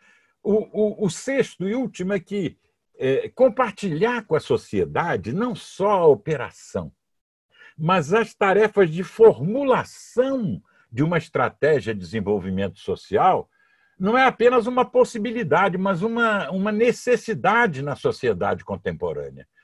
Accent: Brazilian